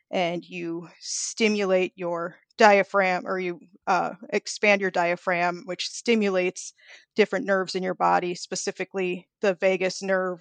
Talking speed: 125 wpm